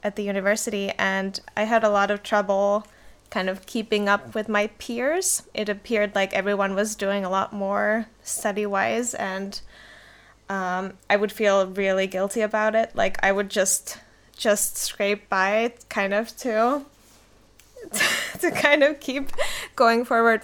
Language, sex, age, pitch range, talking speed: English, female, 10-29, 195-225 Hz, 155 wpm